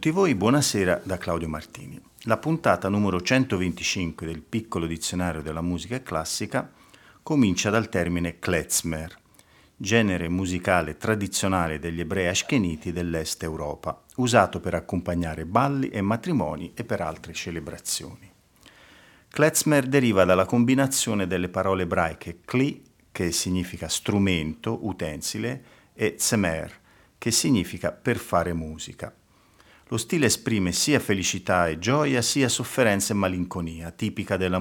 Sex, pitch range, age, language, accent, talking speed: male, 85-110 Hz, 50-69, Italian, native, 120 wpm